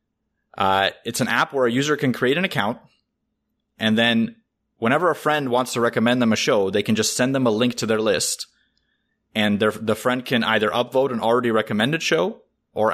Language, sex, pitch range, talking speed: English, male, 100-125 Hz, 205 wpm